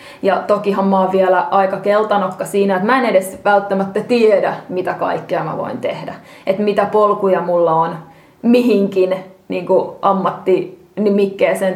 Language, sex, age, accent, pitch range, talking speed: Finnish, female, 20-39, native, 190-215 Hz, 140 wpm